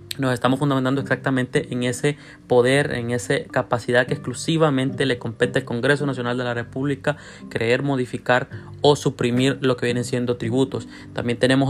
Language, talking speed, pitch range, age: Spanish, 160 wpm, 120-135 Hz, 30-49